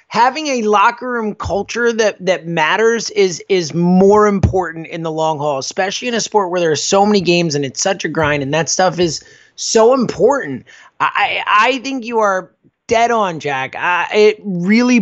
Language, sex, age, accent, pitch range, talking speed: English, male, 30-49, American, 180-235 Hz, 190 wpm